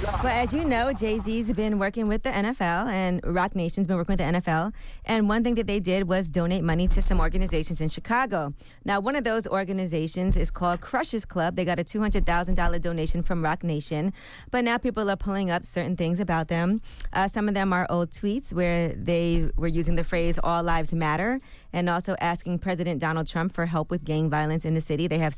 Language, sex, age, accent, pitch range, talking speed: English, female, 20-39, American, 165-195 Hz, 220 wpm